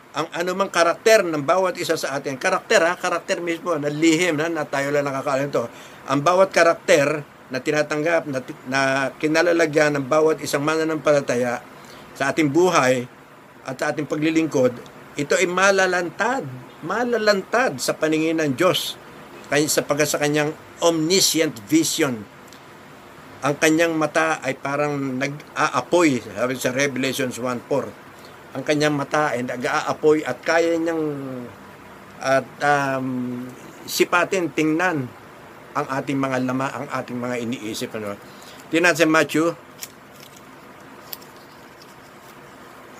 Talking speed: 120 wpm